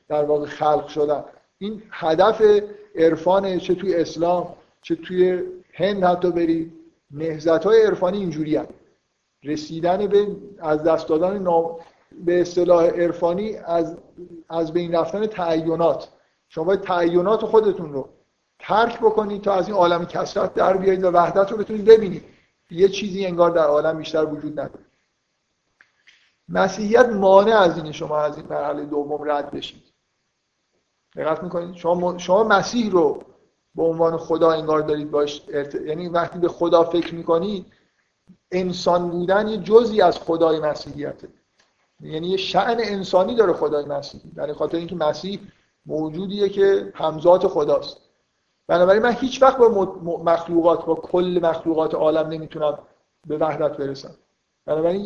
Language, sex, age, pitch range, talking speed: Persian, male, 50-69, 160-195 Hz, 135 wpm